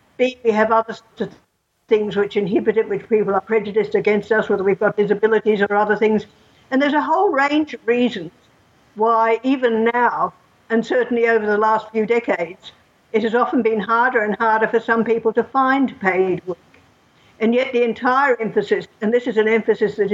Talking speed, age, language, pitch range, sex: 185 wpm, 60-79, English, 210-240 Hz, female